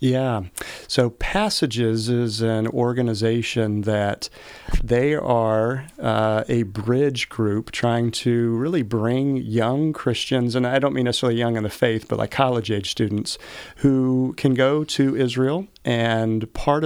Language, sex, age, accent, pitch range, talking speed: English, male, 40-59, American, 110-130 Hz, 140 wpm